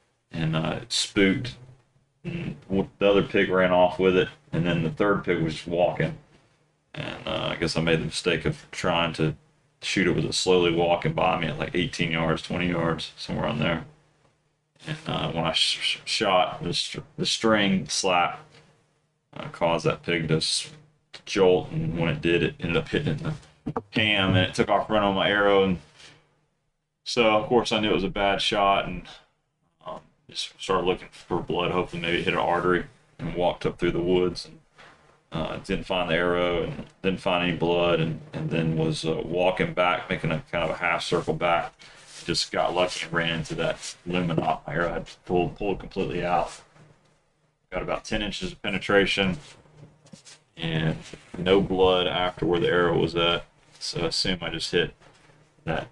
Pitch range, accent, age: 85-130 Hz, American, 30-49